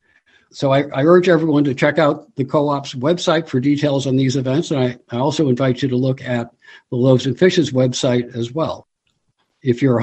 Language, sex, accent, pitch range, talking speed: English, male, American, 120-140 Hz, 205 wpm